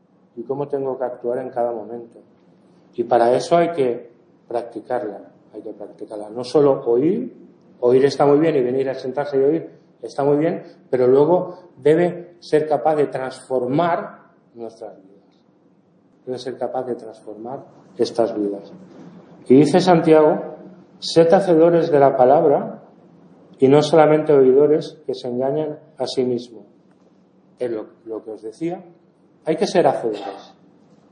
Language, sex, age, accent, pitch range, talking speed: English, male, 40-59, Spanish, 125-165 Hz, 150 wpm